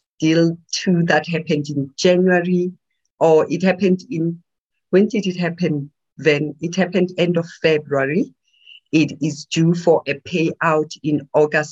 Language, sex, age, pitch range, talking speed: English, female, 50-69, 145-175 Hz, 145 wpm